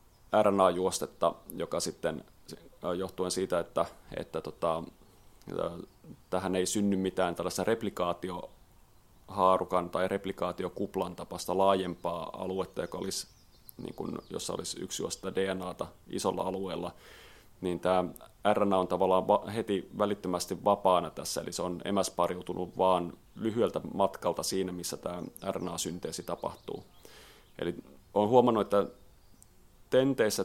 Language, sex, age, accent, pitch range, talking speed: Finnish, male, 30-49, native, 90-100 Hz, 110 wpm